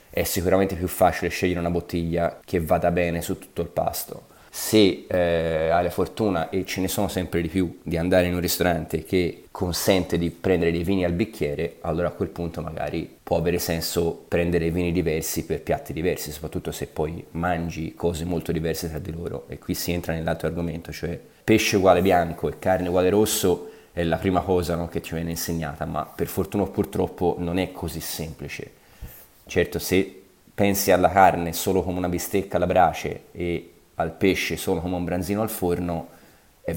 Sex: male